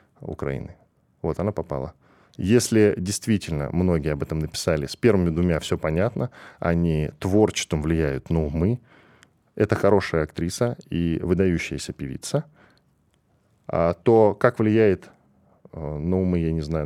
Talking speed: 130 wpm